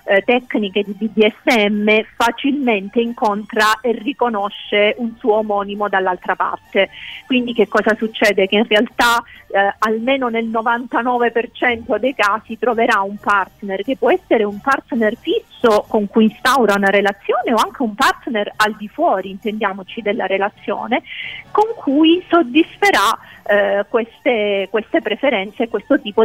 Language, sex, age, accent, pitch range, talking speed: Italian, female, 40-59, native, 205-270 Hz, 135 wpm